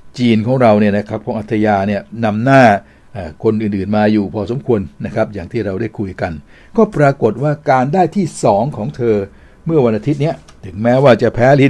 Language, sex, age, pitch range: Thai, male, 60-79, 105-135 Hz